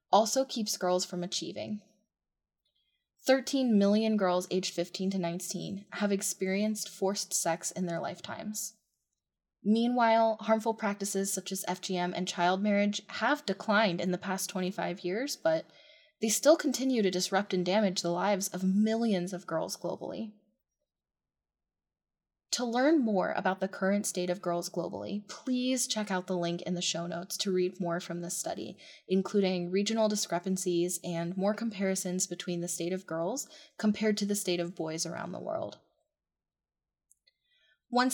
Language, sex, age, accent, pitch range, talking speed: English, female, 20-39, American, 180-220 Hz, 150 wpm